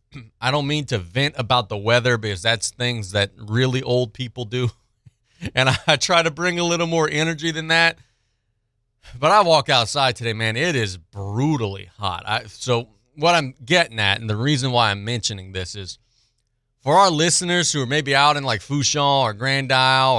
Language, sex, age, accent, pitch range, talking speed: English, male, 30-49, American, 105-135 Hz, 185 wpm